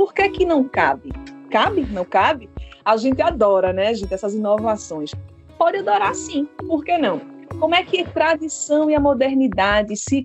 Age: 20-39